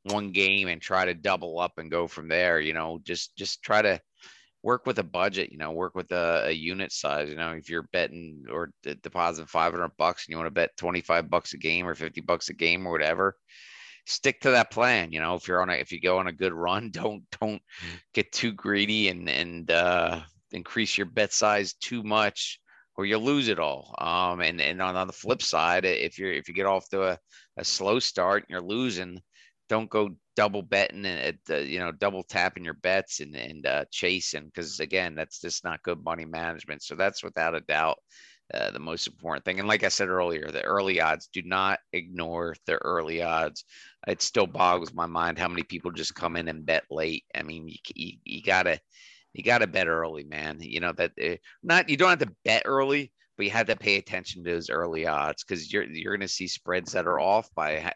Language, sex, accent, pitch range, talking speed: English, male, American, 80-95 Hz, 225 wpm